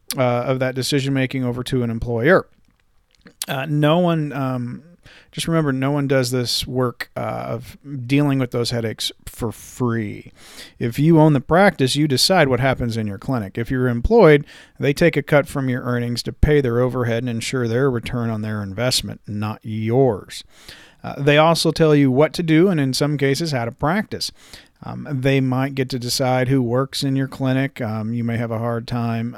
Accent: American